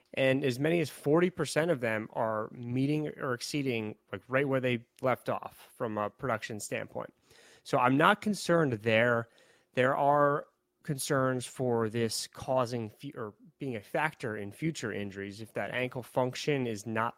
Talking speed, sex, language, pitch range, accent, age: 155 wpm, male, English, 115-140 Hz, American, 30-49